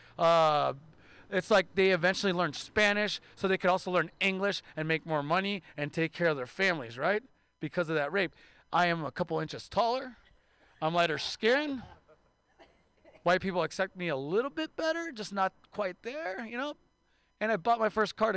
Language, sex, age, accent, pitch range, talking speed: English, male, 30-49, American, 165-225 Hz, 185 wpm